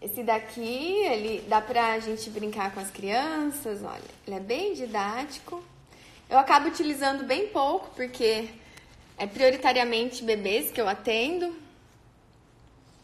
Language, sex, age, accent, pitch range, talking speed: Portuguese, female, 20-39, Brazilian, 215-285 Hz, 130 wpm